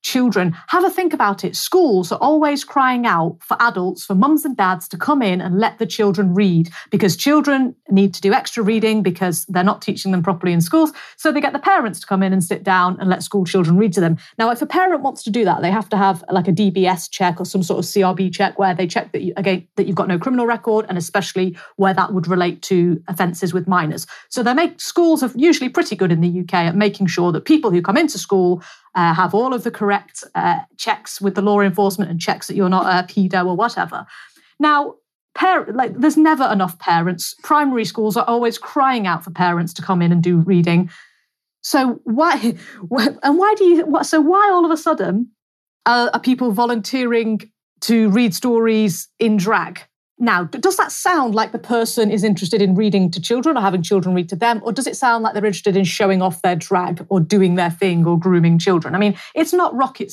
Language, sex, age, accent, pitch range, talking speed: English, female, 40-59, British, 185-255 Hz, 230 wpm